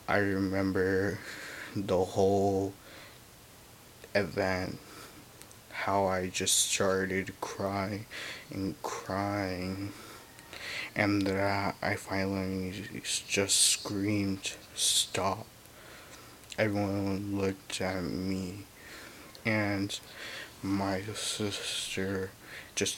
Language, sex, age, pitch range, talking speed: English, male, 20-39, 95-105 Hz, 70 wpm